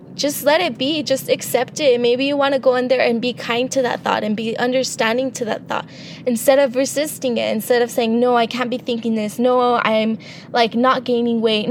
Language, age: English, 10-29